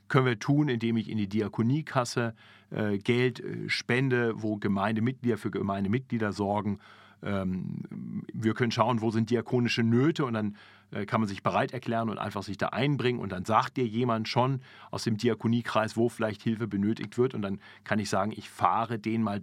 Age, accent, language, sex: 40-59, German, German, male